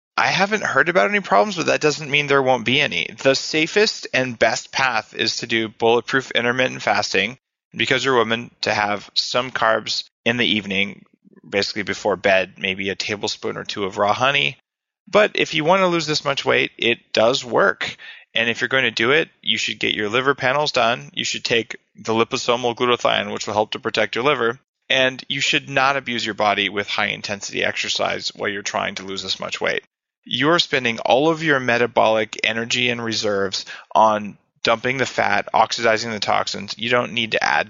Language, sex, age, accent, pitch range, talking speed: English, male, 30-49, American, 110-135 Hz, 200 wpm